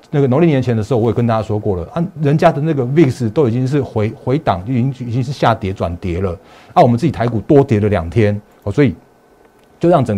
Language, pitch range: Chinese, 100-125 Hz